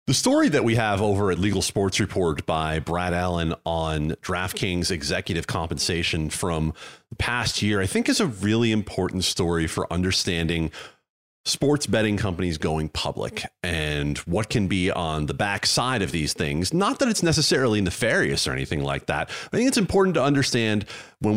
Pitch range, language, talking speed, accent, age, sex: 85-110 Hz, English, 175 wpm, American, 40-59, male